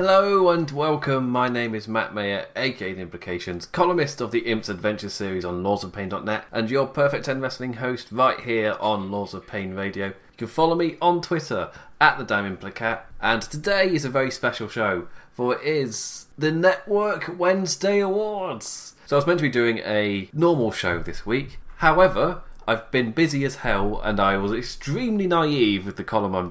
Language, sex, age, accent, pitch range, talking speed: English, male, 20-39, British, 100-140 Hz, 180 wpm